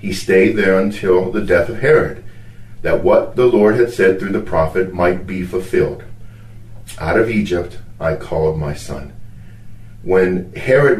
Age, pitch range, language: 40-59, 90-110 Hz, Ukrainian